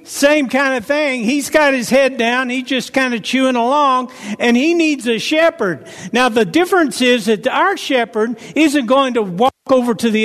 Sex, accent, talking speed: male, American, 200 wpm